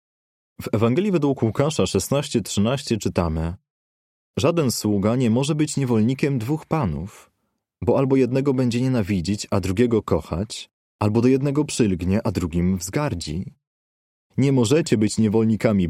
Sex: male